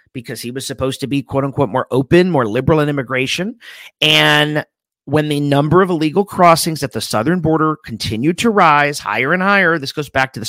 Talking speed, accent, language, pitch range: 200 wpm, American, English, 115-150 Hz